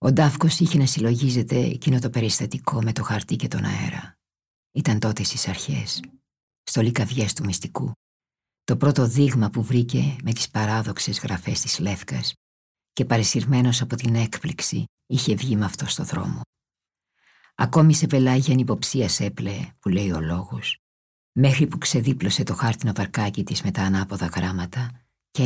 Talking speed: 155 wpm